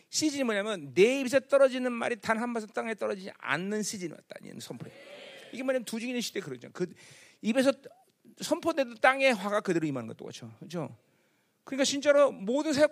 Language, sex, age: Korean, male, 40-59